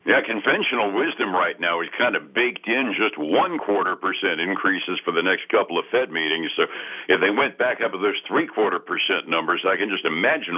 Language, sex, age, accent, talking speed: English, male, 60-79, American, 205 wpm